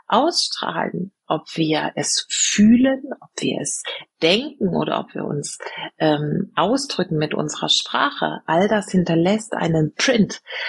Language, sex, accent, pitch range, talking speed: German, female, German, 155-205 Hz, 130 wpm